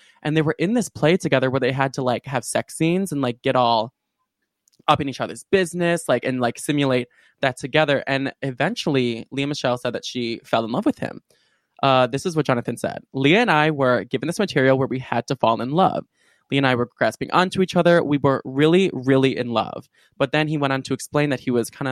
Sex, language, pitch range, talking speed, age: male, English, 125-150 Hz, 240 wpm, 20-39